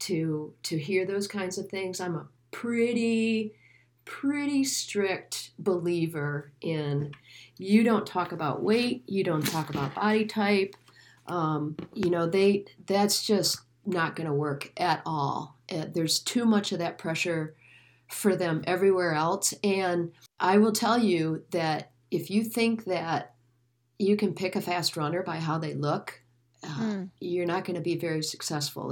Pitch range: 150-195 Hz